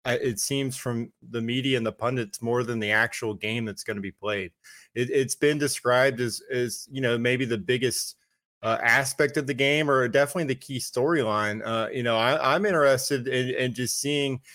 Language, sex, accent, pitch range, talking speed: English, male, American, 110-130 Hz, 195 wpm